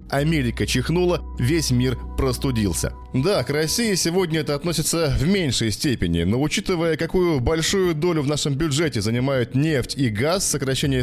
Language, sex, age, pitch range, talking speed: Russian, male, 20-39, 125-170 Hz, 145 wpm